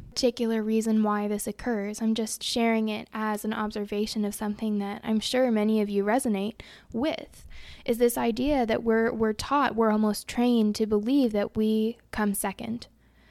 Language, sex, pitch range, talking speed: English, female, 210-235 Hz, 170 wpm